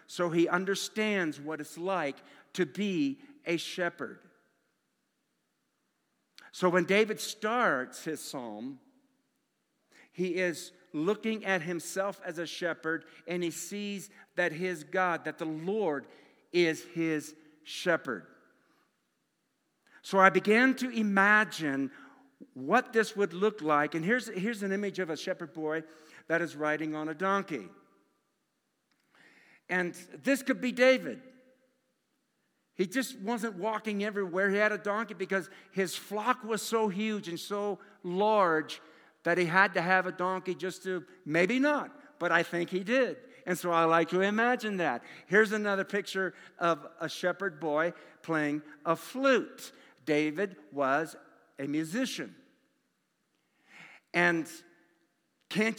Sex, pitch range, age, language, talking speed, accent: male, 170-220 Hz, 50-69, English, 130 wpm, American